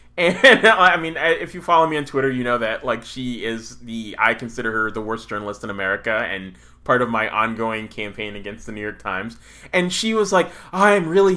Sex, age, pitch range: male, 20-39, 130-175 Hz